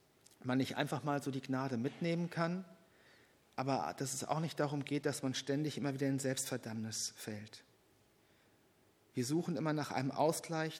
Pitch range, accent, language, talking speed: 125-150 Hz, German, German, 165 wpm